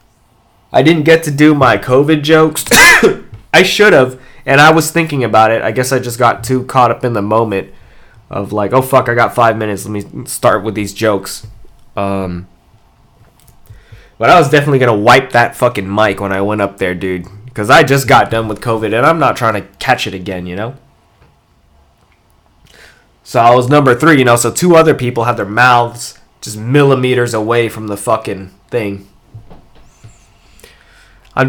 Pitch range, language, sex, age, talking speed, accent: 105-130 Hz, English, male, 20-39, 185 wpm, American